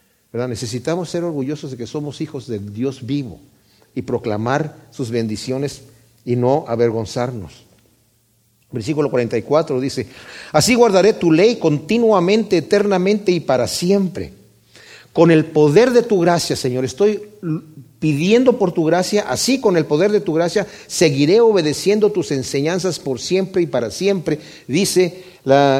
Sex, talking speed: male, 135 wpm